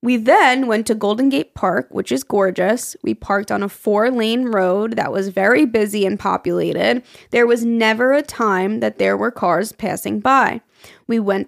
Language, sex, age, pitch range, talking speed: English, female, 20-39, 210-265 Hz, 185 wpm